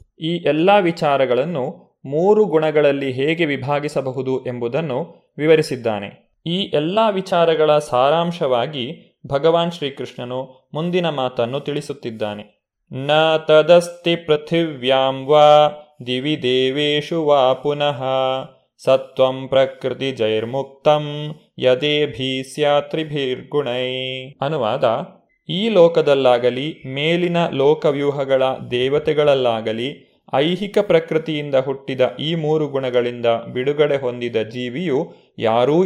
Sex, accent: male, native